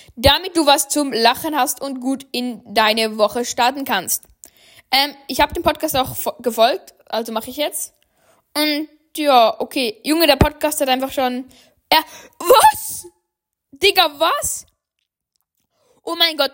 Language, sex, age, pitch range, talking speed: German, female, 10-29, 235-300 Hz, 145 wpm